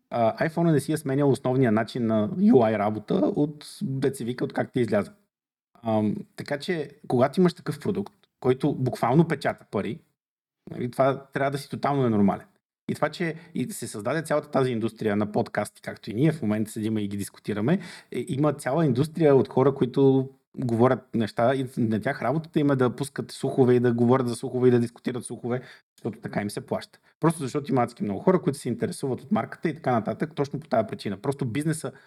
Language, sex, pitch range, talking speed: Bulgarian, male, 120-160 Hz, 185 wpm